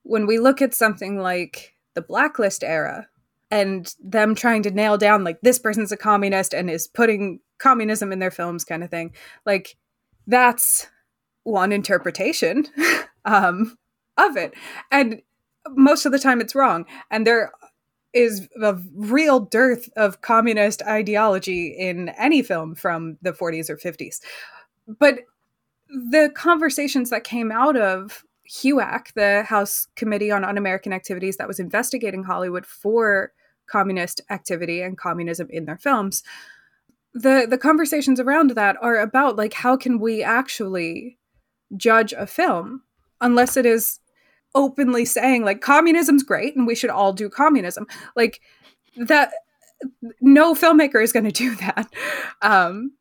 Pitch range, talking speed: 195-260 Hz, 145 wpm